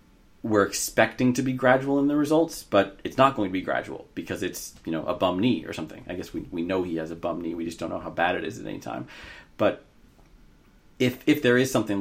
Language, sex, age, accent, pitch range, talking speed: English, male, 30-49, American, 90-115 Hz, 255 wpm